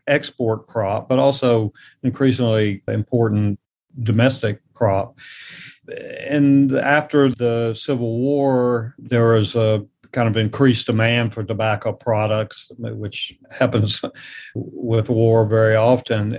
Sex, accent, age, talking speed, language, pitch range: male, American, 40-59, 105 wpm, English, 110-125 Hz